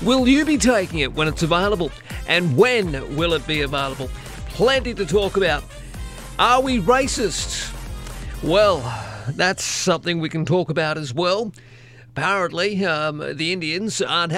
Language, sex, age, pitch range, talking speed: English, male, 40-59, 130-175 Hz, 145 wpm